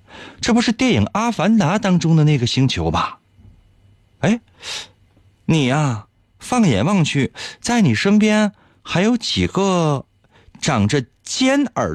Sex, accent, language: male, native, Chinese